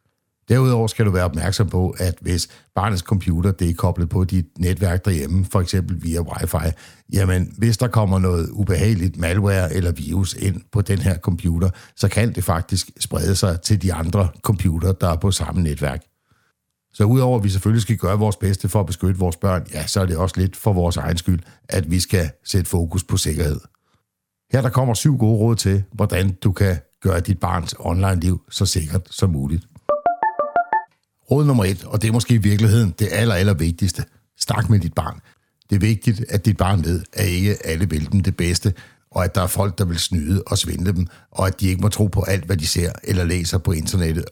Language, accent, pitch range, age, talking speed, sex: Danish, native, 90-105 Hz, 60-79, 210 wpm, male